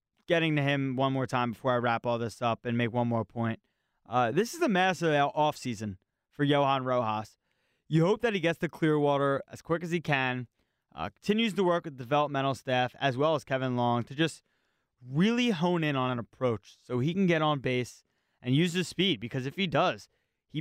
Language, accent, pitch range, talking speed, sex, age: English, American, 125-155 Hz, 215 wpm, male, 20-39